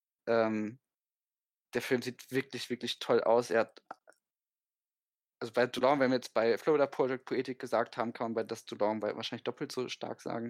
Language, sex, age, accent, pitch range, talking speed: German, male, 10-29, German, 110-130 Hz, 185 wpm